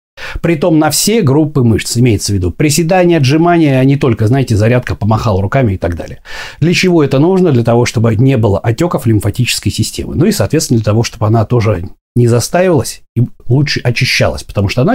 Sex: male